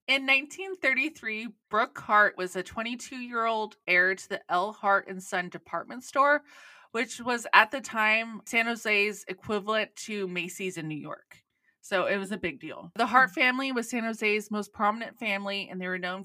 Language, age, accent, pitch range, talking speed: English, 20-39, American, 190-230 Hz, 175 wpm